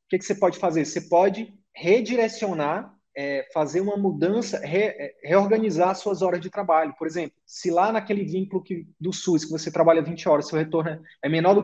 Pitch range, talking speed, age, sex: 150-190 Hz, 195 wpm, 20-39, male